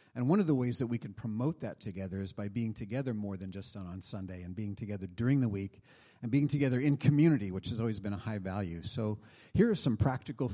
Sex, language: male, English